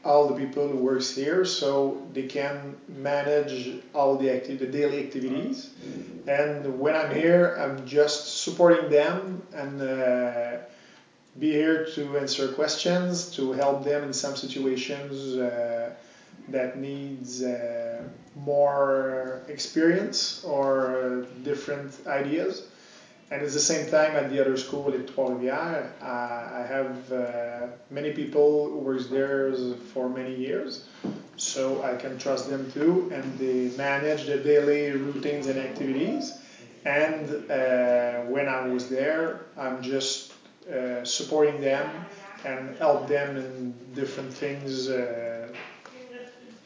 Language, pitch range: English, 130-150 Hz